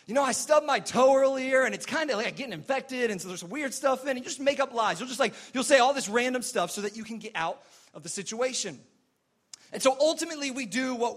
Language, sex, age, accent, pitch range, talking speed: English, male, 30-49, American, 205-260 Hz, 280 wpm